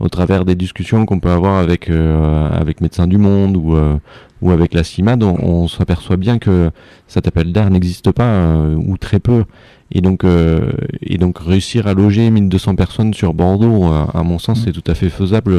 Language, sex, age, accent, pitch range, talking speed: French, male, 30-49, French, 80-95 Hz, 210 wpm